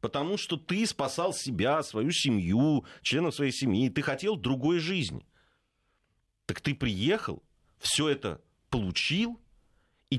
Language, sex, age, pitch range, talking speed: Russian, male, 40-59, 105-155 Hz, 125 wpm